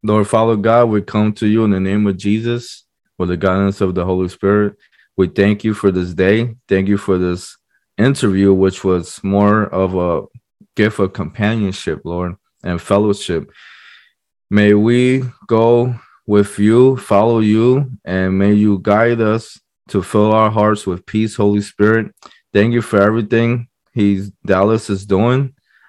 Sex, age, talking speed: male, 20-39, 160 wpm